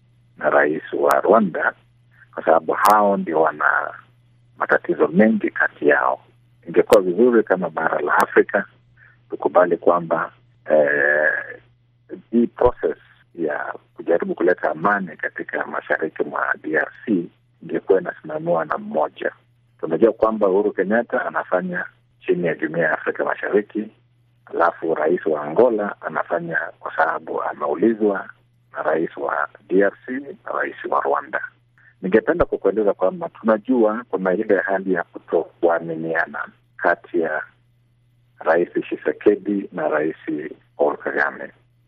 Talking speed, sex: 110 wpm, male